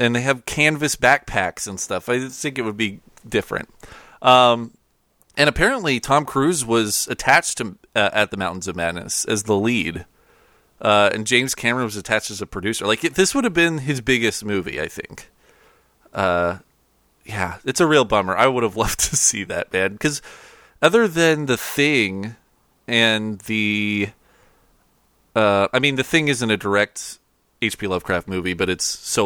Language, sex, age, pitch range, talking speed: English, male, 30-49, 95-130 Hz, 175 wpm